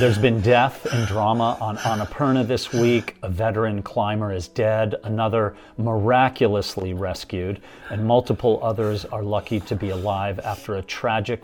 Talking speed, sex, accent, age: 145 wpm, male, American, 40-59